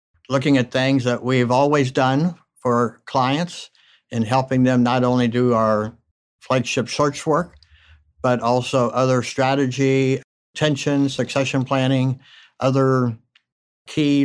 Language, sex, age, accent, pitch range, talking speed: English, male, 60-79, American, 115-135 Hz, 120 wpm